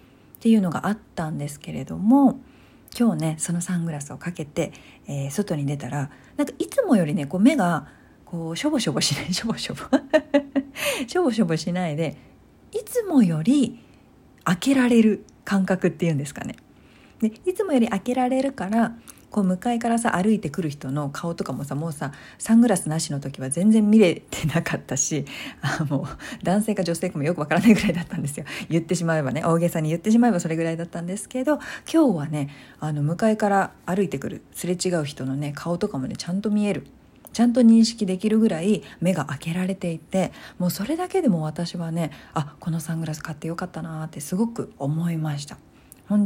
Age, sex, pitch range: 50-69, female, 155-225 Hz